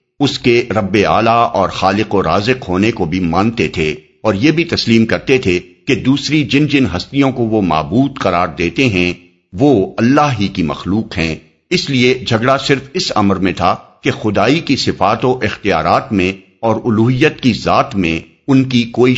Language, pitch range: Urdu, 95-130 Hz